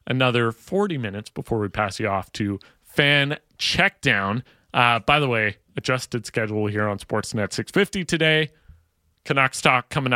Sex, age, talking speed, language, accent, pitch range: male, 30-49, 140 wpm, English, American, 110-145 Hz